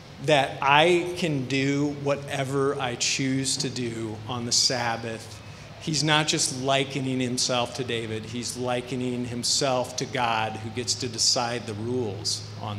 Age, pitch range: 40-59, 115-150 Hz